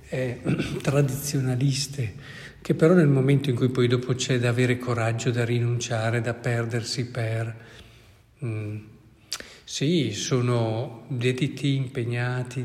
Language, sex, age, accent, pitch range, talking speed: Italian, male, 50-69, native, 120-140 Hz, 115 wpm